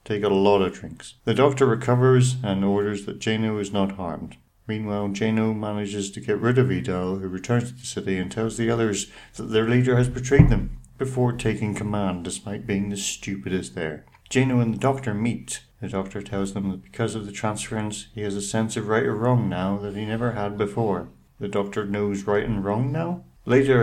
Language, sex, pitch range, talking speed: English, male, 100-115 Hz, 205 wpm